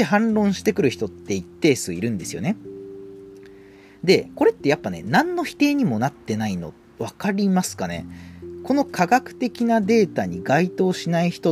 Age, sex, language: 40-59, male, Japanese